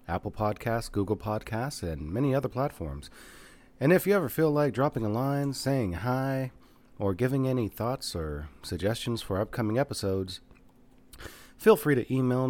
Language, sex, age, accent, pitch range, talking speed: English, male, 30-49, American, 95-125 Hz, 155 wpm